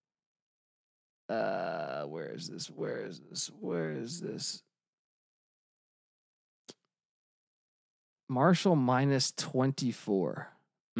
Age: 20-39